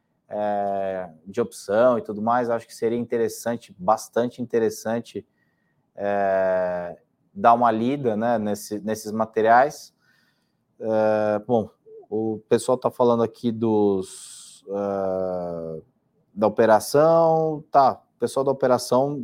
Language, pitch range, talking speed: Portuguese, 110-130 Hz, 95 wpm